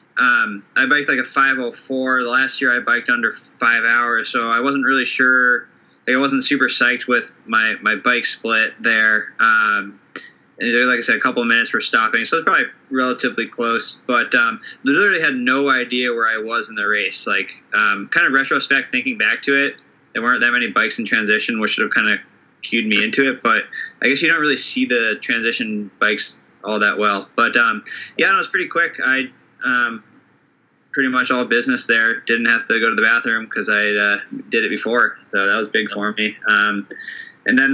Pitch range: 110-135 Hz